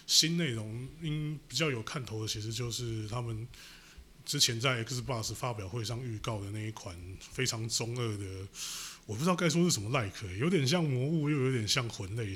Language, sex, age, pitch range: Chinese, male, 30-49, 105-140 Hz